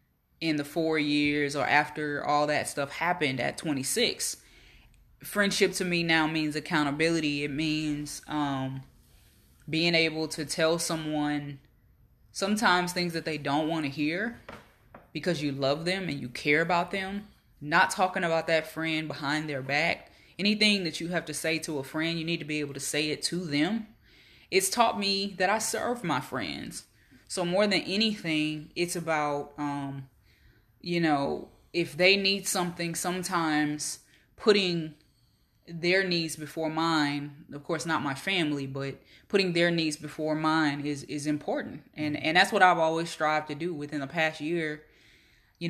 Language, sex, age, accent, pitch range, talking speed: English, female, 20-39, American, 145-170 Hz, 165 wpm